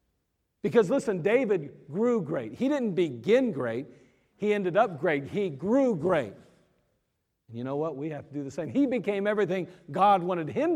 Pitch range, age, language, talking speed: 155-220 Hz, 50-69, English, 175 wpm